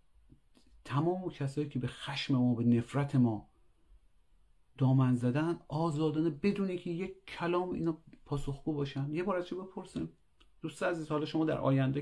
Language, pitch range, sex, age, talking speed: Persian, 105-145 Hz, male, 40-59, 150 wpm